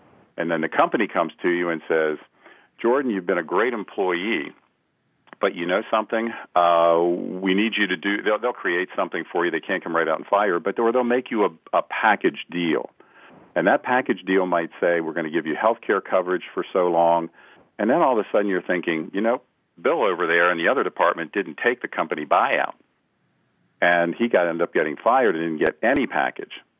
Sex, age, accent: male, 50-69, American